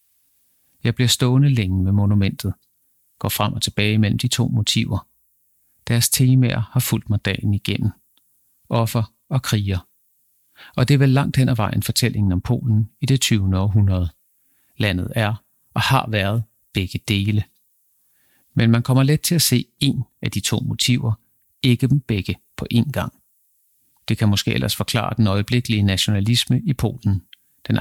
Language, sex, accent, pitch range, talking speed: Danish, male, native, 100-125 Hz, 160 wpm